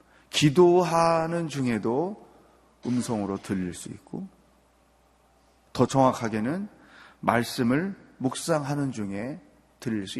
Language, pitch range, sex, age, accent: Korean, 120-185 Hz, male, 30-49, native